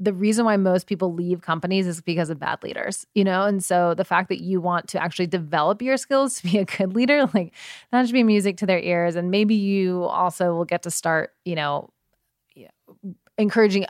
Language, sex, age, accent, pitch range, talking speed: English, female, 20-39, American, 165-195 Hz, 215 wpm